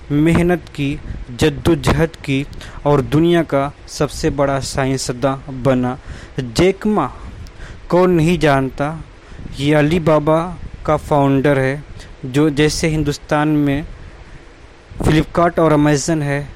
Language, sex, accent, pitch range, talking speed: Hindi, male, native, 140-160 Hz, 100 wpm